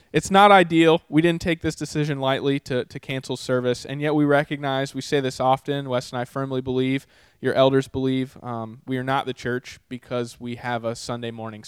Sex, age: male, 20-39